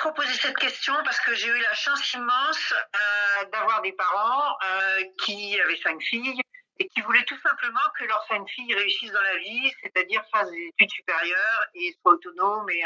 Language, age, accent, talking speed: French, 50-69, French, 190 wpm